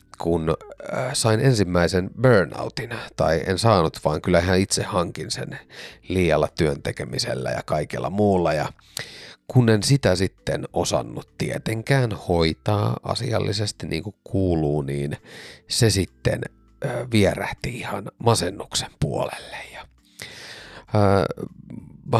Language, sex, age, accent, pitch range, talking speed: Finnish, male, 30-49, native, 90-115 Hz, 105 wpm